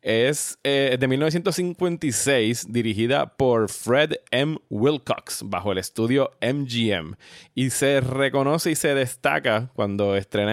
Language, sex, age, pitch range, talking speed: Spanish, male, 20-39, 105-135 Hz, 120 wpm